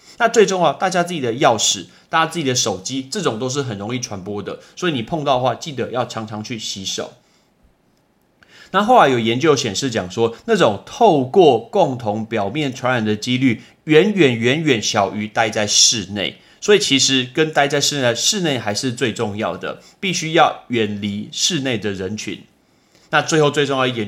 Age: 30-49